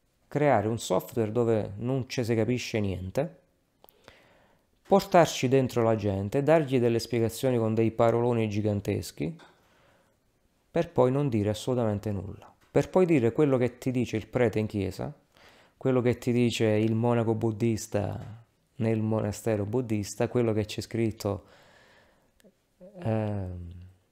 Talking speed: 130 wpm